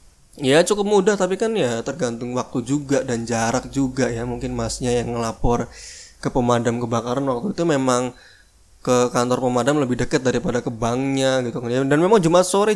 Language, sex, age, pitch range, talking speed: Indonesian, male, 20-39, 120-150 Hz, 170 wpm